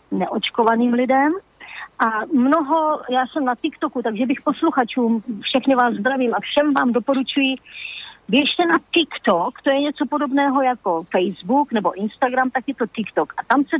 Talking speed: 155 wpm